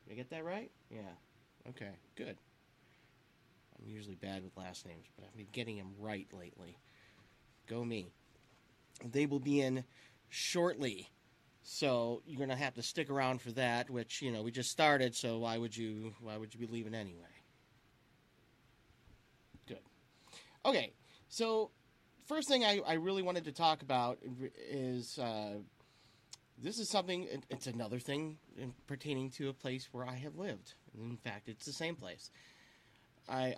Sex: male